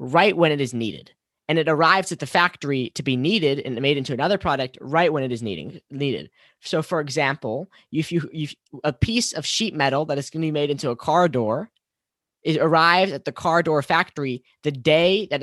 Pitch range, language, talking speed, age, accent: 135-170 Hz, English, 220 wpm, 10-29, American